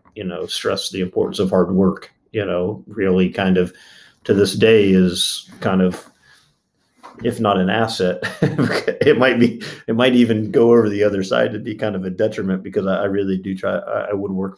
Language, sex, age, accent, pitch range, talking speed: English, male, 40-59, American, 95-115 Hz, 205 wpm